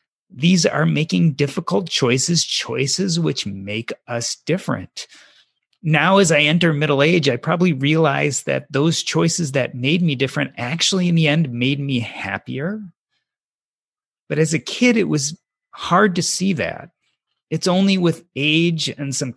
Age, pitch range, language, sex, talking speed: 30-49, 130-175 Hz, English, male, 150 wpm